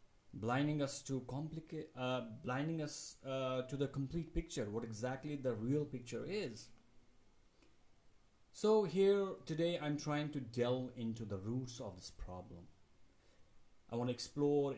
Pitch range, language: 105-135 Hz, English